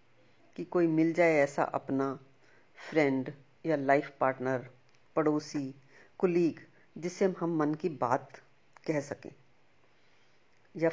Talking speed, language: 110 wpm, Hindi